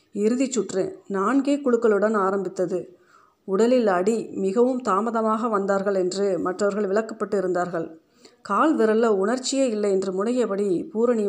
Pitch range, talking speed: 190-230 Hz, 110 wpm